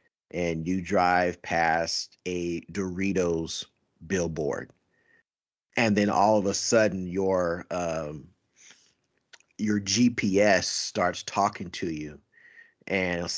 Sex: male